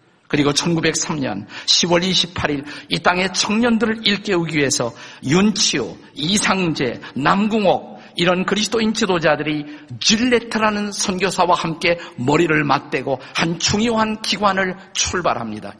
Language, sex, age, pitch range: Korean, male, 50-69, 135-180 Hz